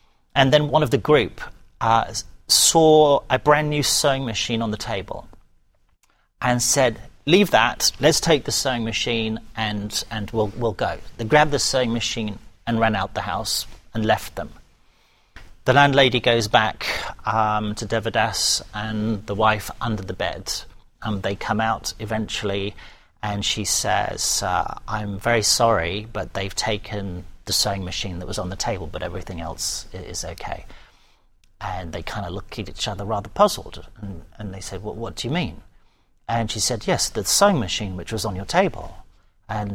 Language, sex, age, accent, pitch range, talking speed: English, male, 40-59, British, 95-120 Hz, 175 wpm